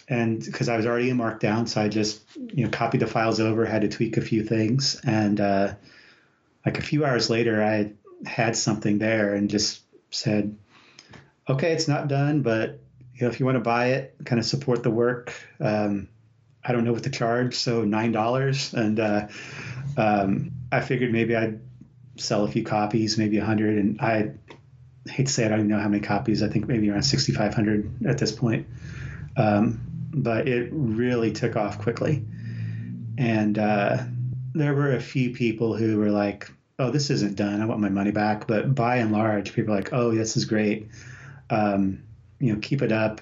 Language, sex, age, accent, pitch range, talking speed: English, male, 30-49, American, 105-125 Hz, 195 wpm